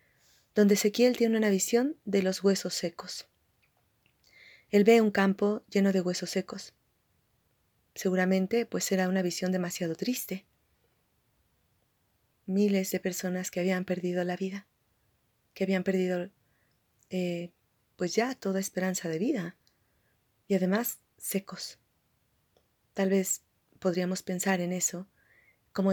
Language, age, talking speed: Spanish, 30-49, 120 wpm